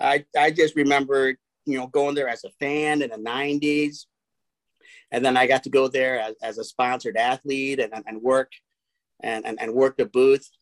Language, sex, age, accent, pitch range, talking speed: English, male, 40-59, American, 120-155 Hz, 200 wpm